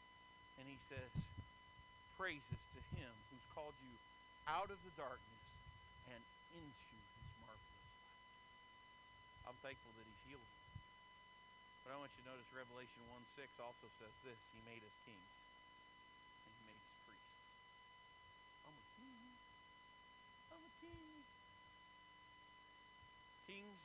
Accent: American